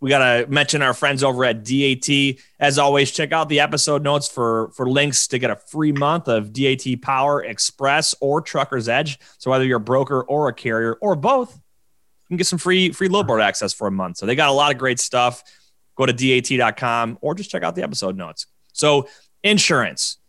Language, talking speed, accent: English, 215 wpm, American